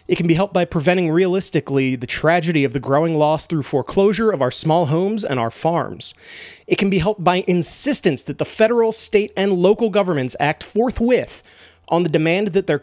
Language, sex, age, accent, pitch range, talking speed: English, male, 30-49, American, 150-195 Hz, 195 wpm